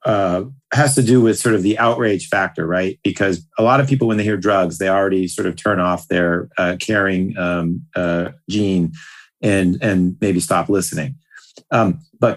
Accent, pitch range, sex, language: American, 100-130 Hz, male, English